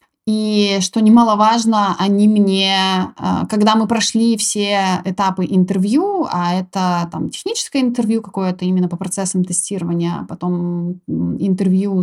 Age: 20-39